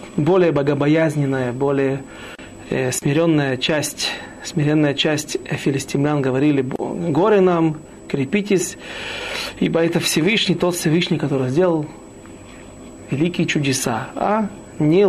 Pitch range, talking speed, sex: 140-175 Hz, 95 wpm, male